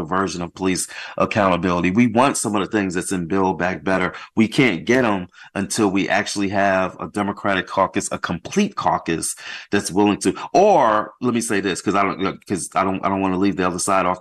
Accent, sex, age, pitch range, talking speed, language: American, male, 30-49, 90-110 Hz, 220 wpm, English